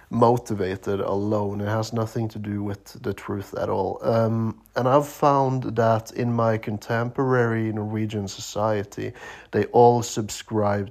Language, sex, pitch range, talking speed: English, male, 105-125 Hz, 140 wpm